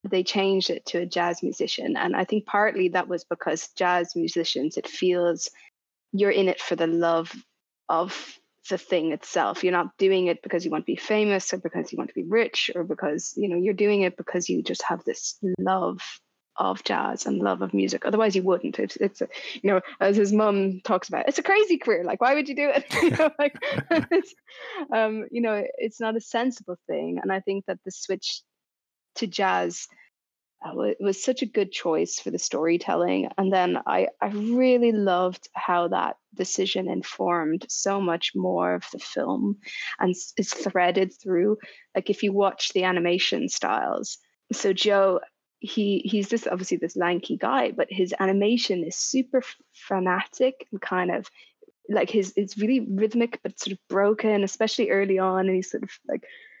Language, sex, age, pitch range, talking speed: English, female, 20-39, 180-225 Hz, 185 wpm